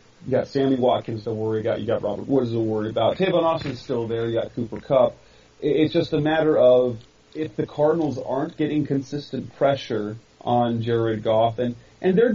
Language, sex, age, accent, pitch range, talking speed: English, male, 30-49, American, 115-140 Hz, 195 wpm